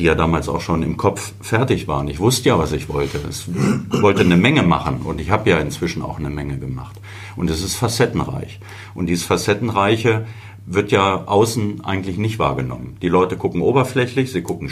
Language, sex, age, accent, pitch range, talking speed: German, male, 50-69, German, 90-105 Hz, 195 wpm